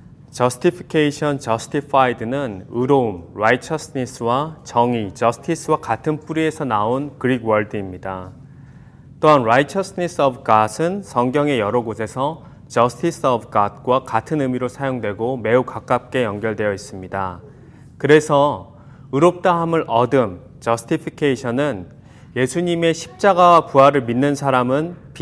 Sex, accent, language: male, native, Korean